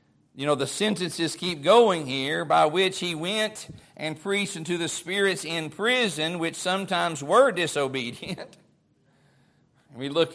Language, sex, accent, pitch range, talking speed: English, male, American, 140-170 Hz, 145 wpm